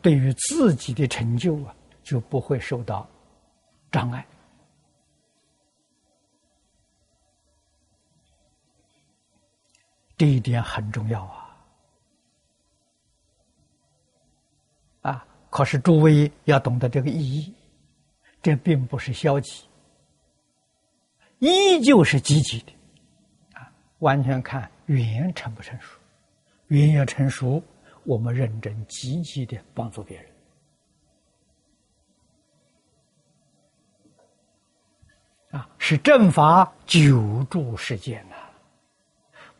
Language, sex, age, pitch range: Chinese, male, 60-79, 115-160 Hz